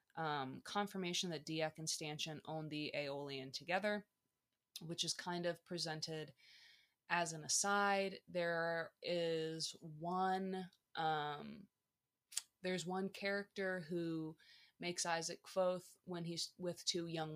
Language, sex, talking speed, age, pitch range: English, female, 120 wpm, 20-39, 165-195 Hz